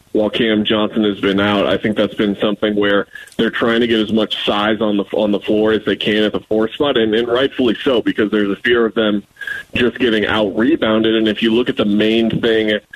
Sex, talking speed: male, 240 wpm